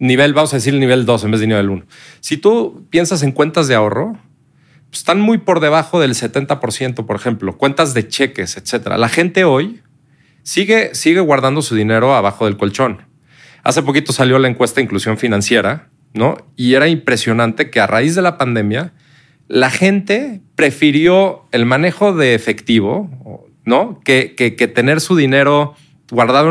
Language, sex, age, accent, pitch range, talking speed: Spanish, male, 40-59, Mexican, 115-150 Hz, 170 wpm